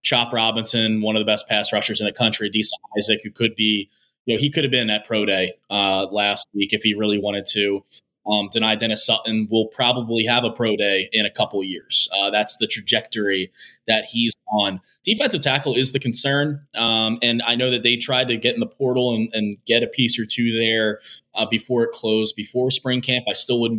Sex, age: male, 20-39